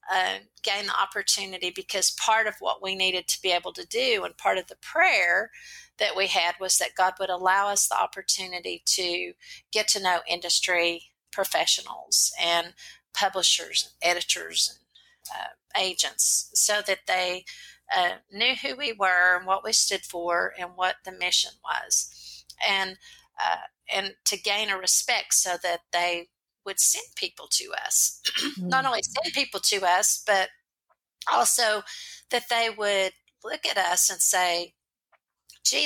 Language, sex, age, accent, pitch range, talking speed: English, female, 50-69, American, 175-210 Hz, 155 wpm